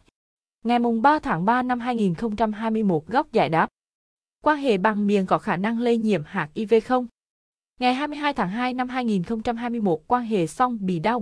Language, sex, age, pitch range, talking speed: Vietnamese, female, 20-39, 185-250 Hz, 175 wpm